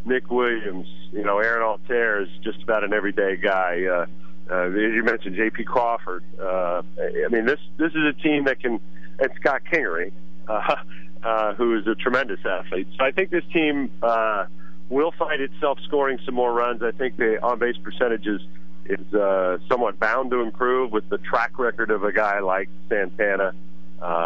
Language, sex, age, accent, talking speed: English, male, 40-59, American, 180 wpm